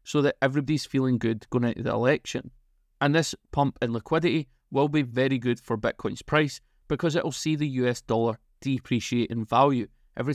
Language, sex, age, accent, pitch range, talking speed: English, male, 30-49, British, 120-140 Hz, 180 wpm